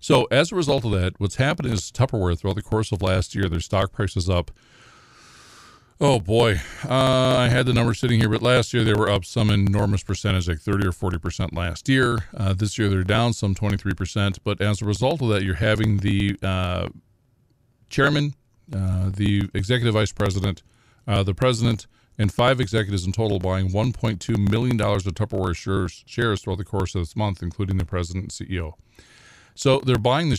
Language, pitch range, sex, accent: English, 95-120 Hz, male, American